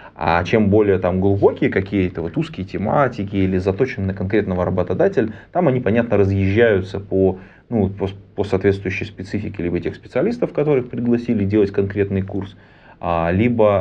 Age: 20-39